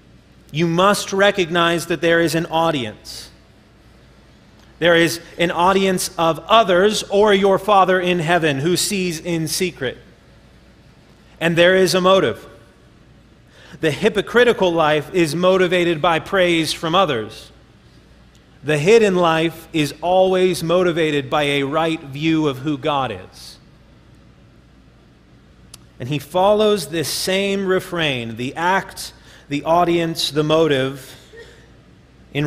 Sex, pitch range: male, 150-185 Hz